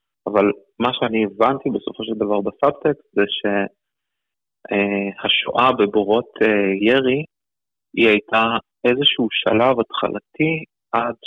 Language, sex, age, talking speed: Hebrew, male, 30-49, 95 wpm